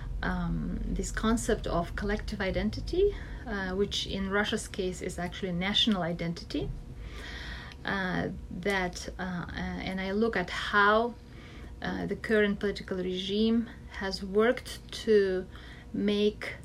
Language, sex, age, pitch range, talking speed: English, female, 30-49, 185-225 Hz, 115 wpm